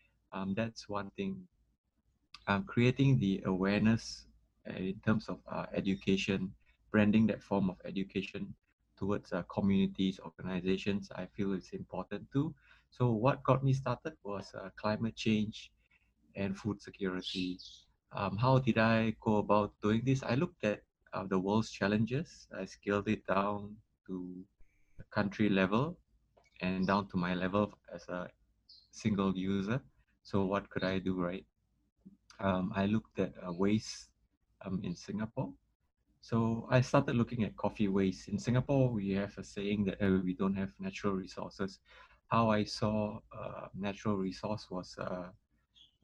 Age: 20-39